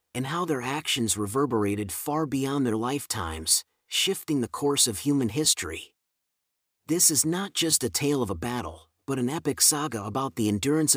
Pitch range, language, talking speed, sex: 110-150 Hz, English, 170 wpm, male